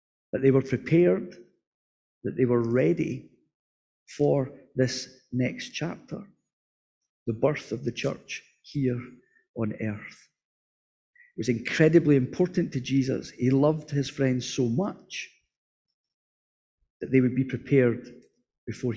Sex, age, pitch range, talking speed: male, 50-69, 115-150 Hz, 120 wpm